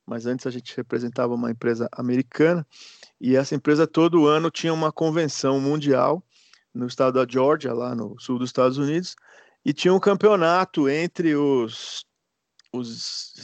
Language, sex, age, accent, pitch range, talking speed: Portuguese, male, 40-59, Brazilian, 125-160 Hz, 150 wpm